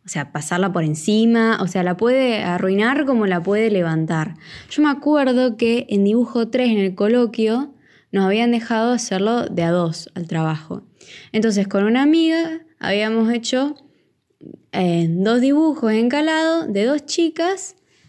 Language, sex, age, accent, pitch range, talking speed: Spanish, female, 20-39, Argentinian, 180-250 Hz, 155 wpm